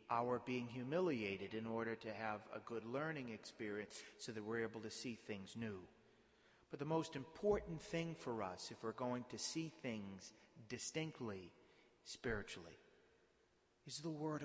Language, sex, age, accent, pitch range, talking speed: English, male, 40-59, American, 115-160 Hz, 155 wpm